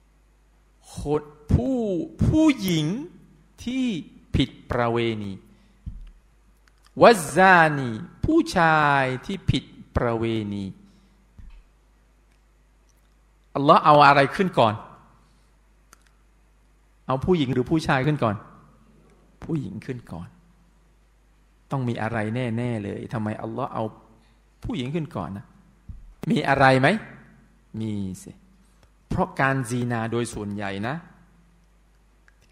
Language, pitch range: Thai, 115-175 Hz